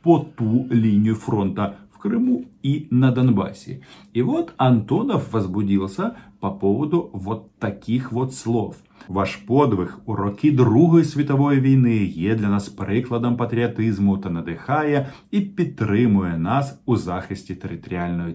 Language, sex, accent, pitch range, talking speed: Russian, male, native, 100-150 Hz, 130 wpm